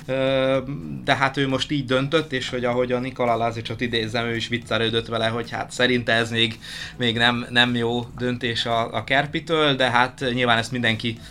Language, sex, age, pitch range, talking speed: Hungarian, male, 20-39, 110-130 Hz, 185 wpm